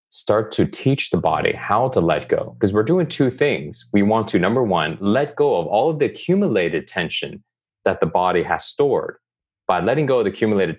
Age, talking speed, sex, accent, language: 30-49, 210 wpm, male, American, English